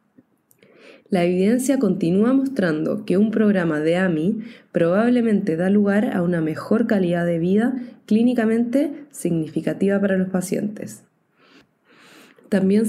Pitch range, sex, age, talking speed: 175-215 Hz, female, 20-39, 110 wpm